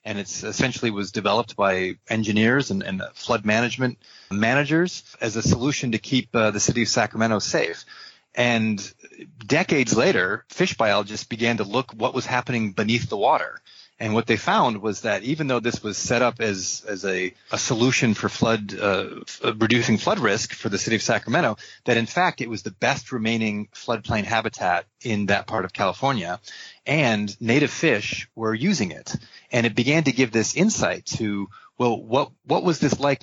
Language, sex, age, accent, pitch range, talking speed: English, male, 30-49, American, 105-130 Hz, 180 wpm